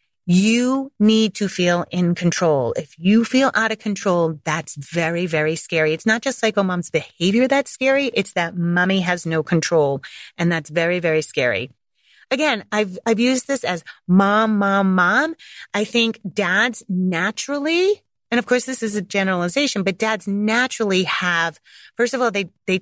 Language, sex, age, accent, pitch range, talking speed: English, female, 30-49, American, 160-210 Hz, 170 wpm